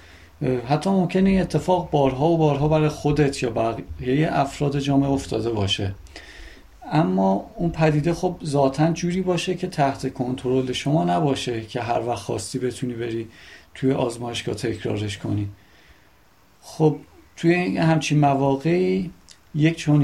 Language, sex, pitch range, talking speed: Persian, male, 115-150 Hz, 125 wpm